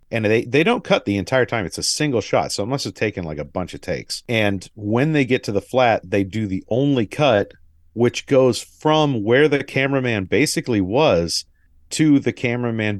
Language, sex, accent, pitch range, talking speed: English, male, American, 90-120 Hz, 210 wpm